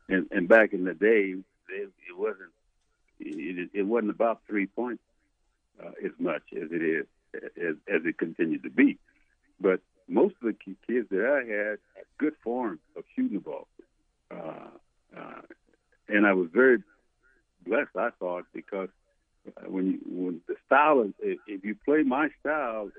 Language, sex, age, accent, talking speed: English, male, 60-79, American, 165 wpm